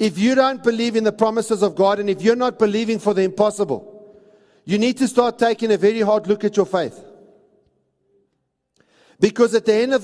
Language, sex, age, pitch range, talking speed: English, male, 50-69, 200-235 Hz, 205 wpm